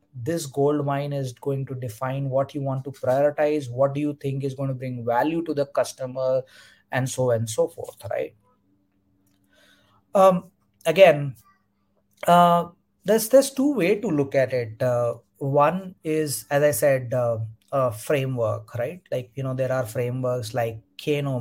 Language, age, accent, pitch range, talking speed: Hindi, 30-49, native, 115-145 Hz, 165 wpm